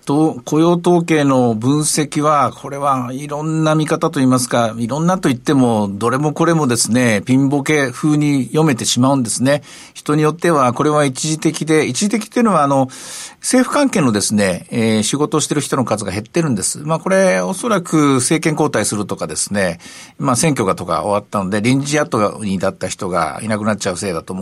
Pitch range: 115-160 Hz